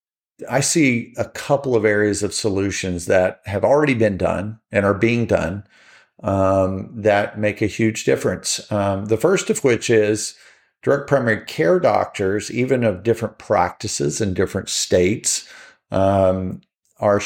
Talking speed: 145 wpm